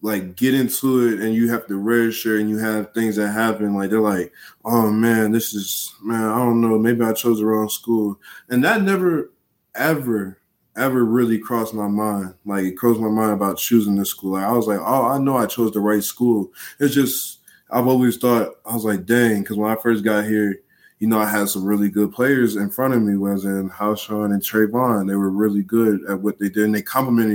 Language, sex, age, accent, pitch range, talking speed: English, male, 20-39, American, 105-120 Hz, 235 wpm